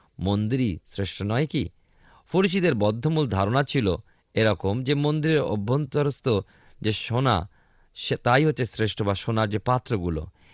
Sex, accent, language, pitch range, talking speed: male, native, Bengali, 100-140 Hz, 125 wpm